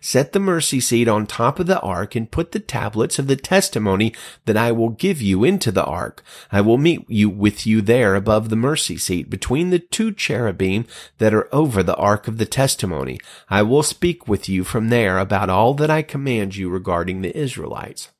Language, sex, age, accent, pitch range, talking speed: English, male, 40-59, American, 105-145 Hz, 210 wpm